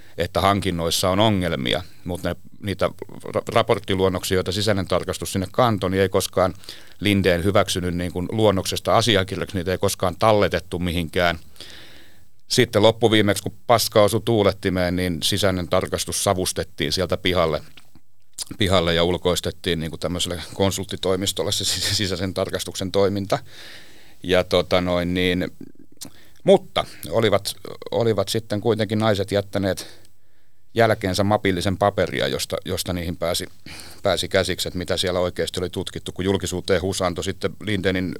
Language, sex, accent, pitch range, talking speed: Finnish, male, native, 90-100 Hz, 125 wpm